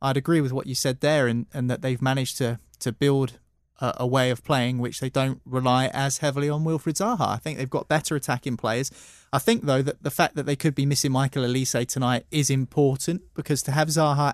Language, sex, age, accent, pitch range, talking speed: English, male, 20-39, British, 115-135 Hz, 235 wpm